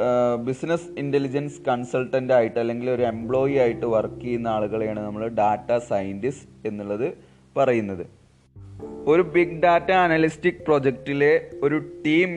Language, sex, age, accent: Malayalam, male, 20-39, native